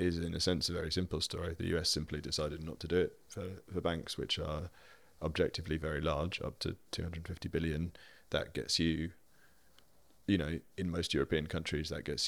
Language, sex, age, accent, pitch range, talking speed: English, male, 30-49, British, 80-90 Hz, 185 wpm